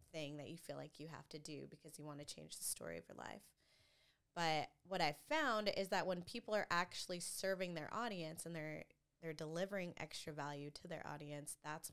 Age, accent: 20-39, American